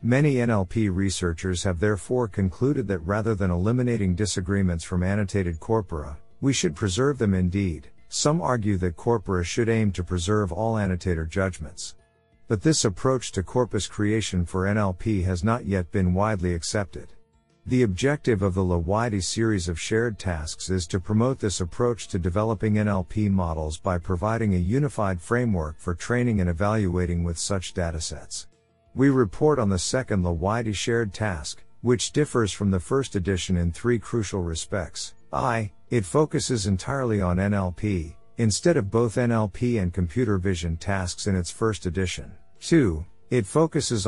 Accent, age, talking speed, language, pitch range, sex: American, 50-69, 155 wpm, English, 90-115 Hz, male